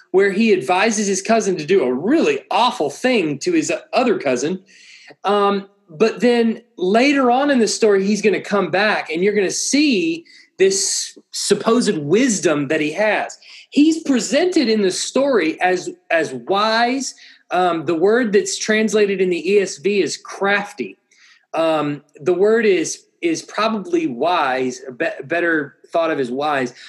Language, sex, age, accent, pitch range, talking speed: English, male, 30-49, American, 195-245 Hz, 155 wpm